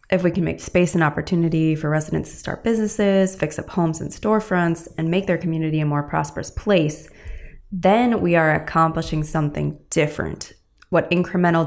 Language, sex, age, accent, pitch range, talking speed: English, female, 20-39, American, 150-185 Hz, 170 wpm